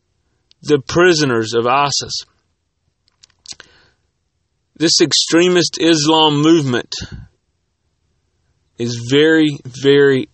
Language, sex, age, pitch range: English, male, 30-49, 95-140 Hz